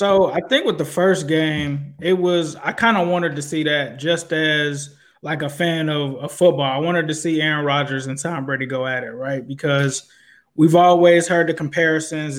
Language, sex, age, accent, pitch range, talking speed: English, male, 20-39, American, 150-180 Hz, 210 wpm